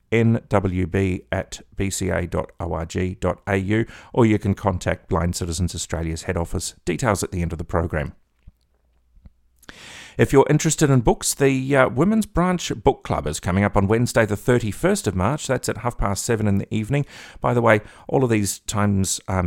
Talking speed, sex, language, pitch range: 170 wpm, male, English, 90-115 Hz